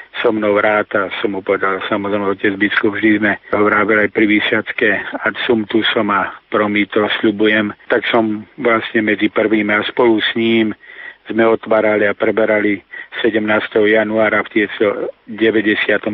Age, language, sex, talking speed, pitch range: 50-69, Slovak, male, 150 wpm, 105-115 Hz